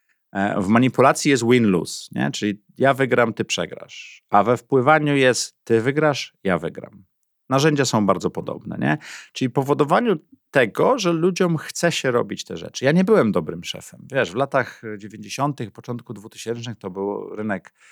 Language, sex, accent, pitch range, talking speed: Polish, male, native, 100-160 Hz, 155 wpm